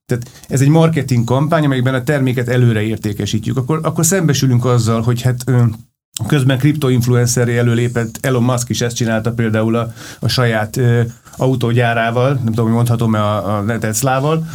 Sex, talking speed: male, 155 wpm